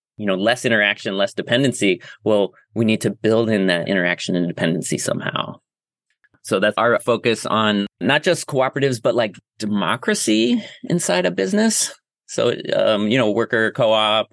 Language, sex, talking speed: English, male, 155 wpm